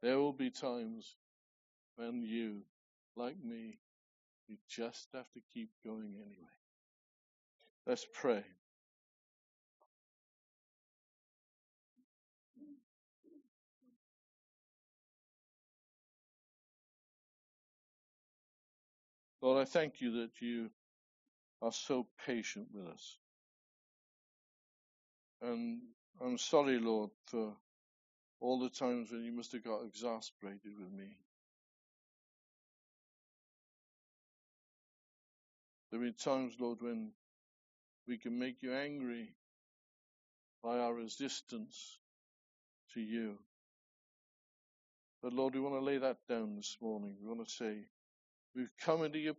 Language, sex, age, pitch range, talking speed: English, male, 60-79, 115-170 Hz, 95 wpm